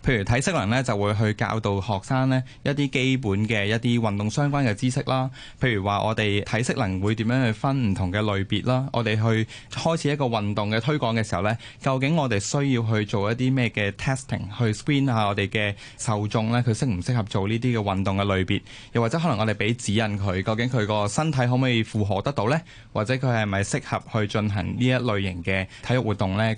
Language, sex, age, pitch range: Chinese, male, 20-39, 105-130 Hz